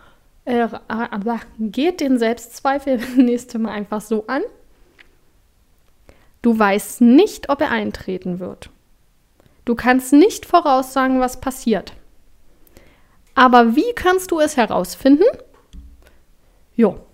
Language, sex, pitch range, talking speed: German, female, 230-285 Hz, 105 wpm